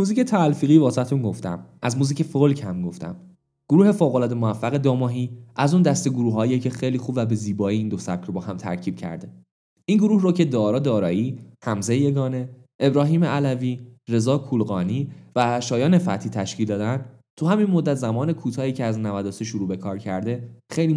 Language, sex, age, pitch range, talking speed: Persian, male, 10-29, 110-160 Hz, 175 wpm